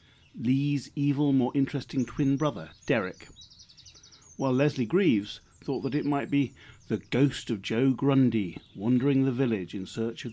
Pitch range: 110-140 Hz